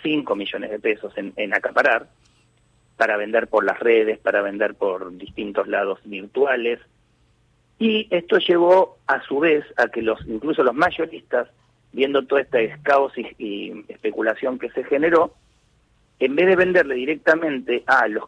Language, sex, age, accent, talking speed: Spanish, male, 40-59, Argentinian, 155 wpm